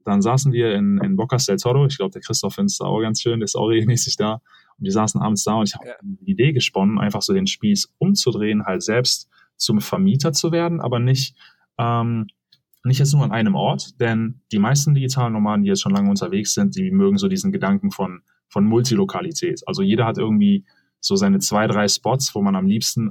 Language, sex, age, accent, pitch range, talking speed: German, male, 20-39, German, 105-170 Hz, 215 wpm